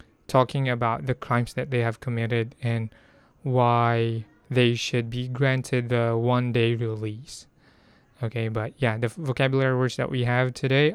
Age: 20-39